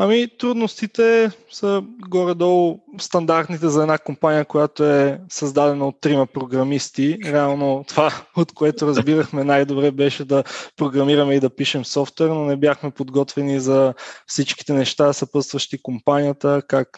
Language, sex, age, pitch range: Bulgarian, male, 20-39, 135-155 Hz